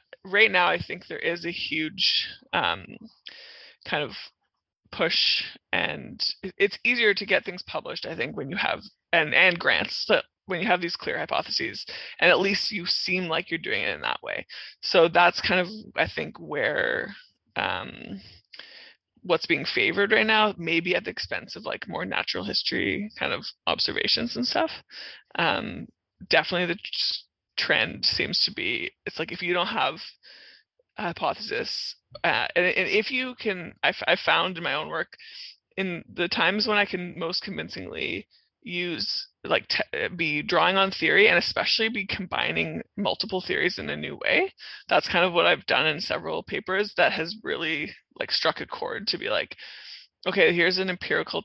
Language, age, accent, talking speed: English, 20-39, American, 175 wpm